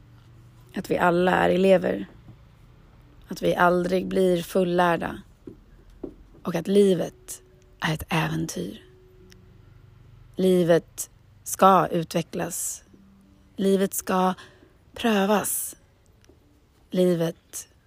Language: Swedish